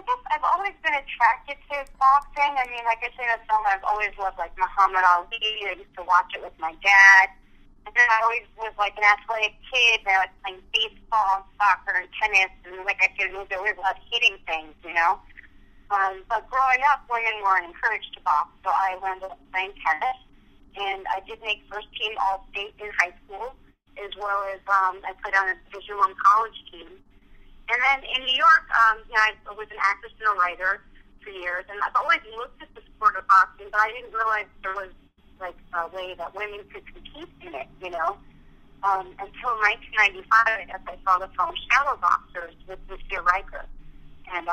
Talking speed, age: 200 wpm, 30-49